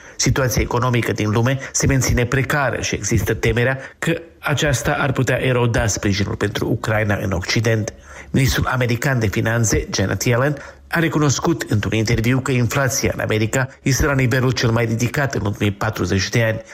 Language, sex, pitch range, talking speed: Romanian, male, 110-135 Hz, 160 wpm